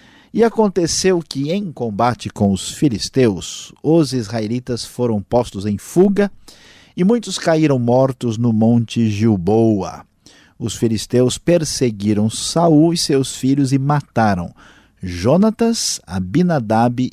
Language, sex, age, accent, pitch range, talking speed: Portuguese, male, 50-69, Brazilian, 110-140 Hz, 110 wpm